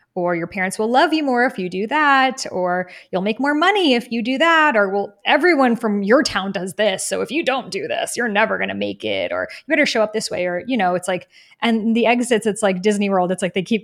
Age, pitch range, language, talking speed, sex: 20-39, 185-245 Hz, English, 275 wpm, female